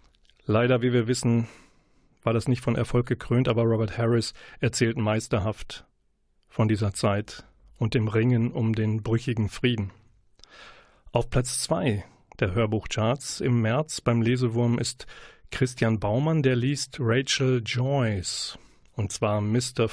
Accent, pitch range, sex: German, 110-130 Hz, male